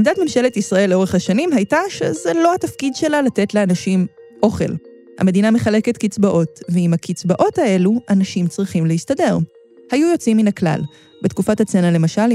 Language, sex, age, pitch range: Hebrew, female, 20-39, 175-225 Hz